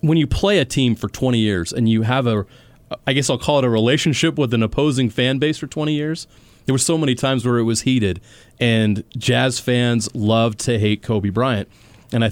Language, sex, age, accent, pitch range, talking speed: English, male, 30-49, American, 110-130 Hz, 225 wpm